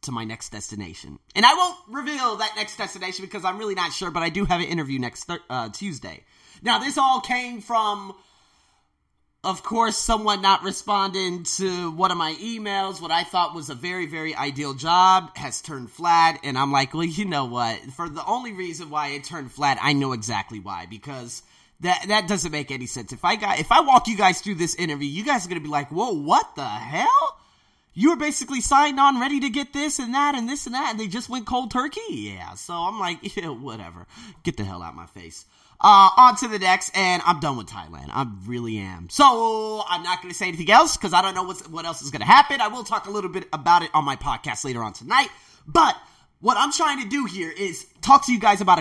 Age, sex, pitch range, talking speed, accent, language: 30-49, male, 145-225 Hz, 235 wpm, American, English